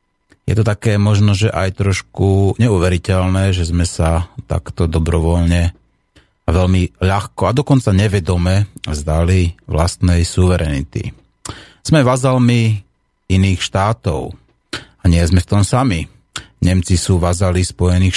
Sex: male